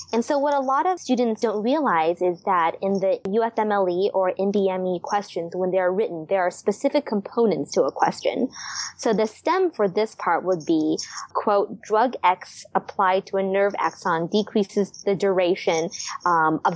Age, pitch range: 20-39, 185-235 Hz